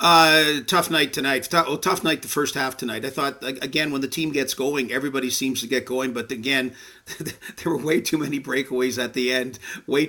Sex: male